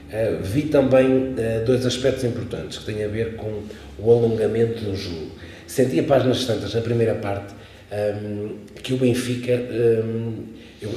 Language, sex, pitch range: Portuguese, male, 105-130 Hz